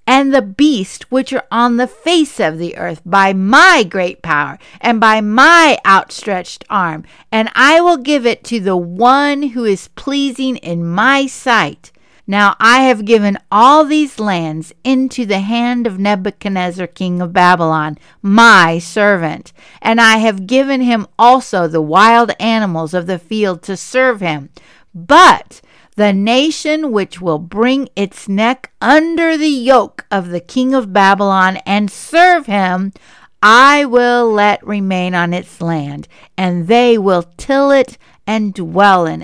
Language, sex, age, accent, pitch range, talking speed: English, female, 50-69, American, 185-265 Hz, 155 wpm